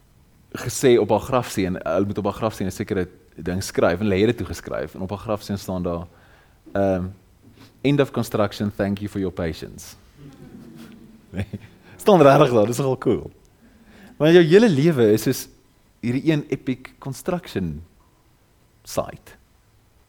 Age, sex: 30-49, male